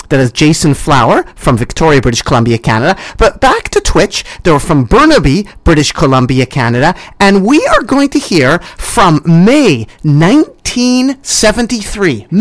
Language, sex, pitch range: English, male, 135-210 Hz